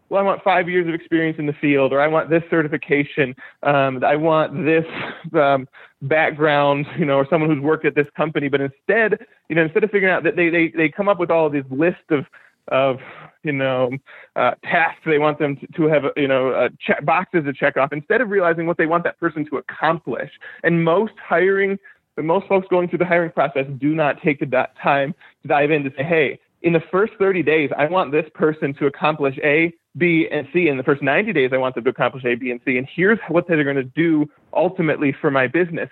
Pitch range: 145-175 Hz